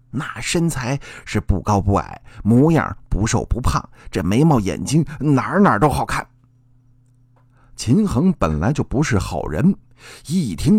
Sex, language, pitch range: male, Chinese, 120-185 Hz